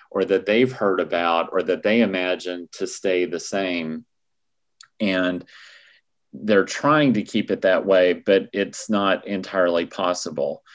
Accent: American